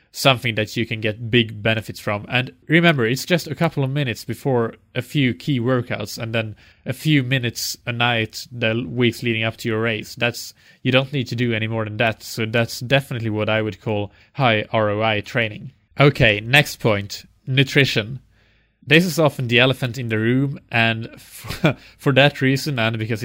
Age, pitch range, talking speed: 20-39, 110-130 Hz, 190 wpm